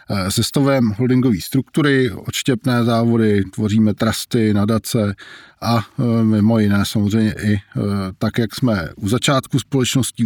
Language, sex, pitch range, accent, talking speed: Czech, male, 90-115 Hz, native, 110 wpm